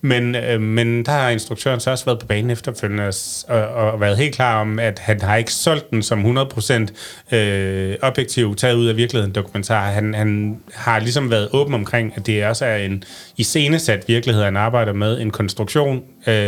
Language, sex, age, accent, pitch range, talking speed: Danish, male, 30-49, native, 105-125 Hz, 185 wpm